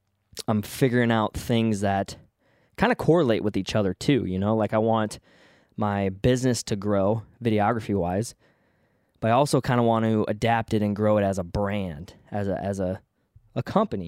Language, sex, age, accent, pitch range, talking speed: English, male, 20-39, American, 100-125 Hz, 190 wpm